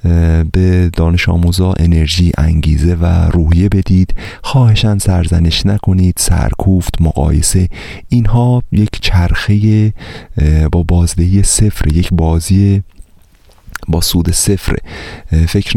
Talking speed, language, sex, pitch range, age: 95 wpm, Persian, male, 80-100 Hz, 30-49